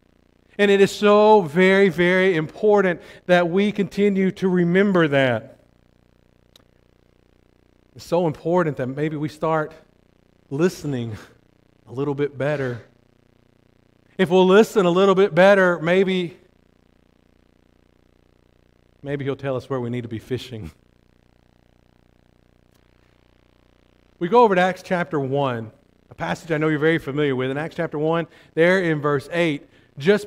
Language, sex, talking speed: English, male, 135 wpm